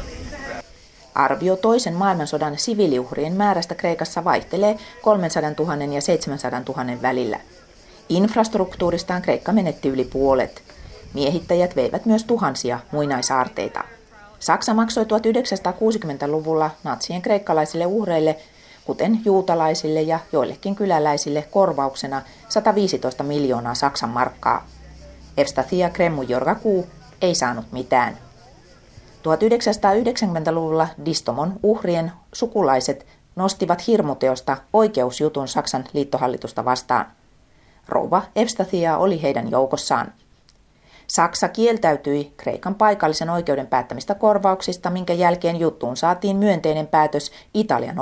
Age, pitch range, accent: 30-49, 140-200 Hz, native